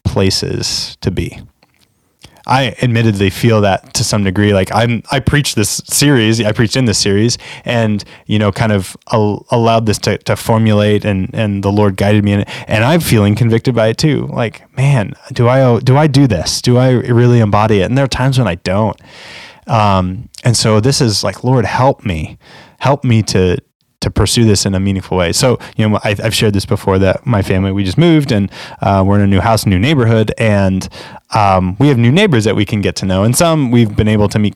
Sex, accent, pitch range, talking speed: male, American, 100-125 Hz, 220 wpm